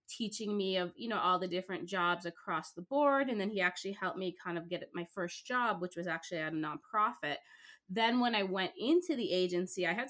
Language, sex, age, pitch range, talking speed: English, female, 20-39, 180-220 Hz, 230 wpm